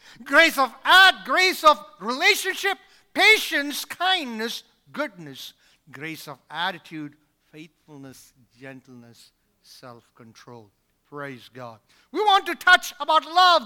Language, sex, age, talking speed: English, male, 50-69, 100 wpm